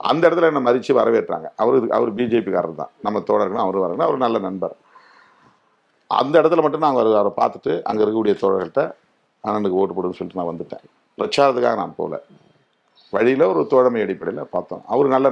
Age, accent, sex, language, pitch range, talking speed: 50-69, native, male, Tamil, 110-145 Hz, 165 wpm